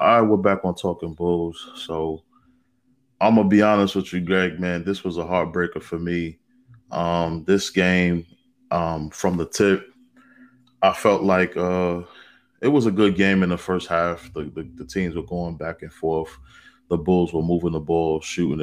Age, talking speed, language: 20-39, 190 wpm, English